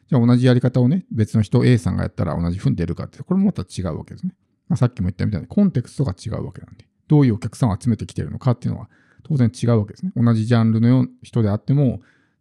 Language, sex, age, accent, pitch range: Japanese, male, 50-69, native, 100-130 Hz